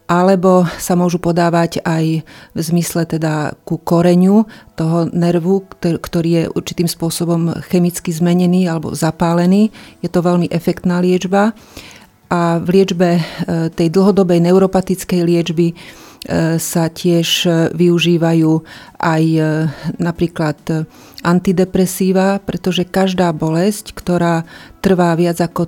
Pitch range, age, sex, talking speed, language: 165-185 Hz, 30-49, female, 105 wpm, Slovak